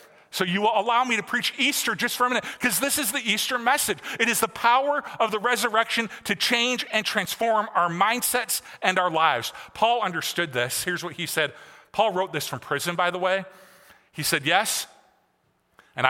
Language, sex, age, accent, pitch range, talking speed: English, male, 40-59, American, 180-235 Hz, 200 wpm